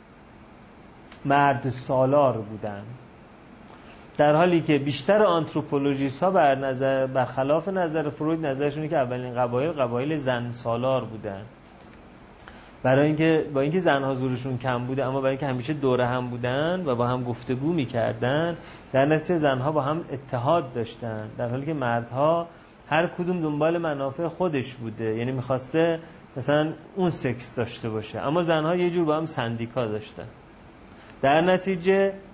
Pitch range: 125-155 Hz